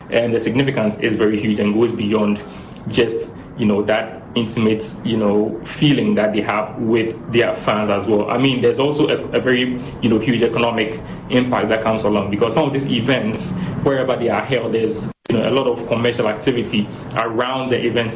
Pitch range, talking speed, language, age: 110-125 Hz, 200 wpm, English, 20-39